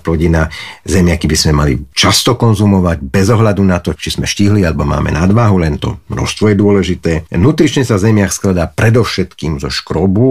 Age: 50-69